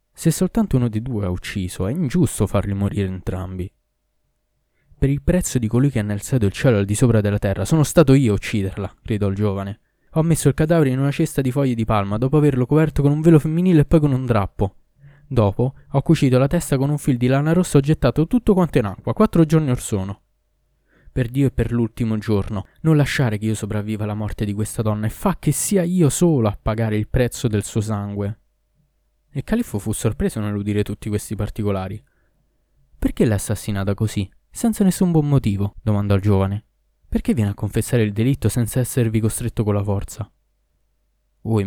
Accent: native